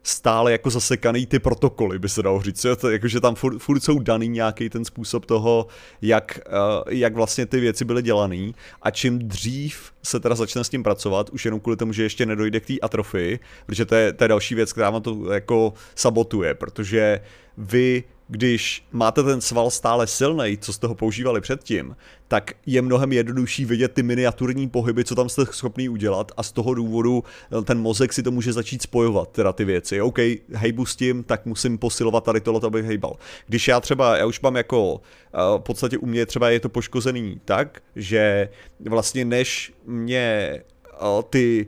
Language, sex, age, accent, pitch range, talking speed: Czech, male, 30-49, native, 110-125 Hz, 185 wpm